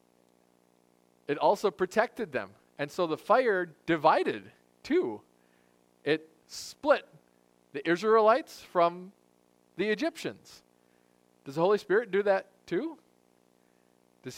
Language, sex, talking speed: English, male, 105 wpm